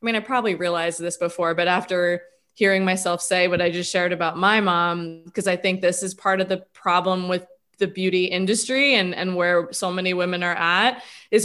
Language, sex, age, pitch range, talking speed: English, female, 20-39, 180-225 Hz, 215 wpm